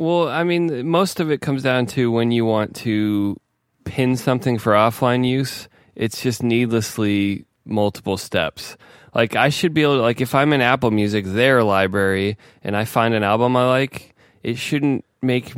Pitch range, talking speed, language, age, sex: 100-125 Hz, 180 wpm, English, 20-39, male